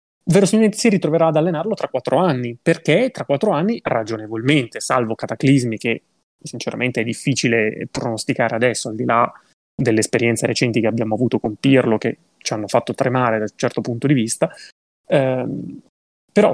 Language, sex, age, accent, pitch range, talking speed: Italian, male, 20-39, native, 115-155 Hz, 160 wpm